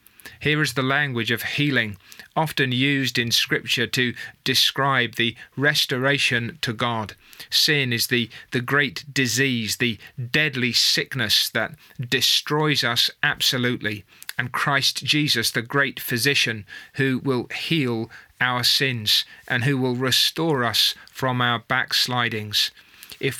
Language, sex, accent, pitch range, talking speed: English, male, British, 120-145 Hz, 125 wpm